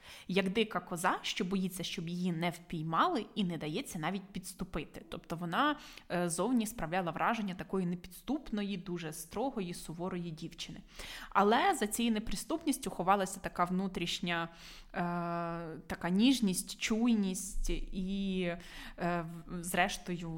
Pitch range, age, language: 175-205 Hz, 20-39, Ukrainian